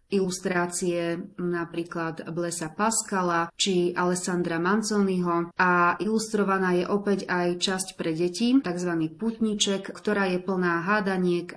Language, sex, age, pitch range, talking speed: Slovak, female, 30-49, 175-205 Hz, 110 wpm